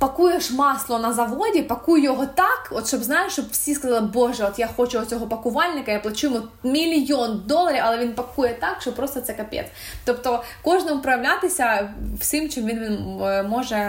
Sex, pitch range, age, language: female, 230-290 Hz, 20-39, Ukrainian